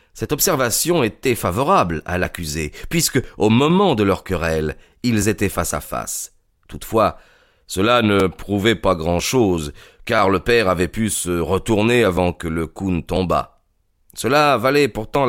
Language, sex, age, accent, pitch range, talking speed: French, male, 40-59, French, 90-130 Hz, 155 wpm